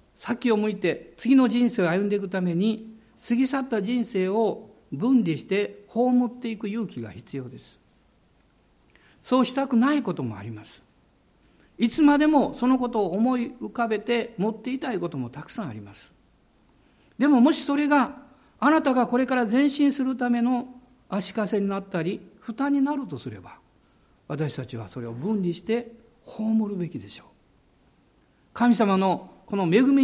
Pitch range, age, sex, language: 180-255 Hz, 60-79, male, Japanese